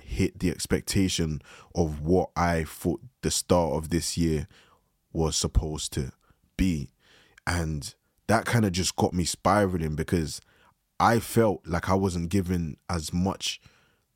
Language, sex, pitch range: English, male, 80-100 Hz